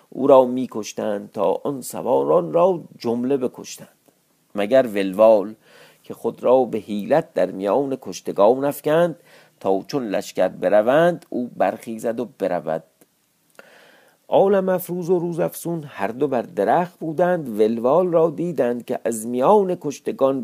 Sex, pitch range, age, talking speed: male, 100-155 Hz, 50-69, 130 wpm